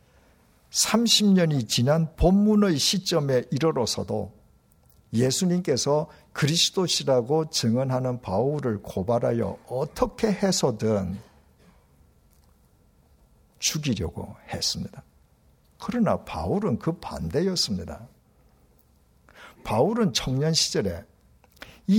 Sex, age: male, 60-79